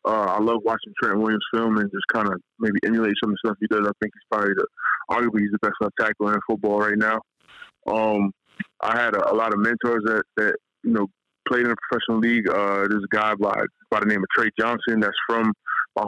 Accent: American